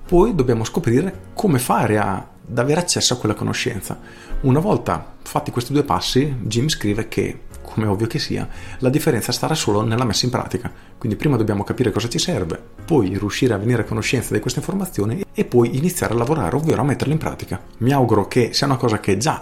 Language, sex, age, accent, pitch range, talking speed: Italian, male, 40-59, native, 100-130 Hz, 205 wpm